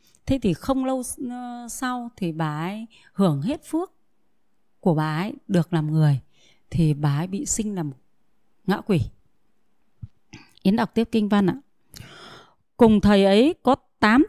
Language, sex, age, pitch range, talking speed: Vietnamese, female, 20-39, 175-250 Hz, 150 wpm